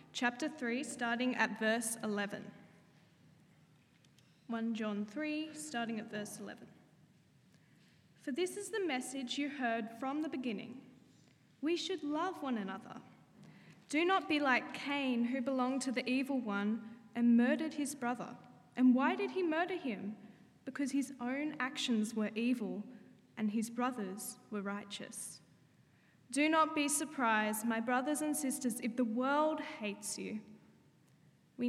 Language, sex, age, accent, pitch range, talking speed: English, female, 10-29, Australian, 225-295 Hz, 140 wpm